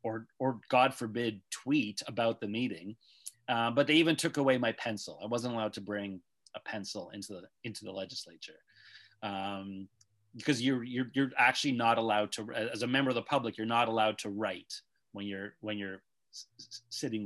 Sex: male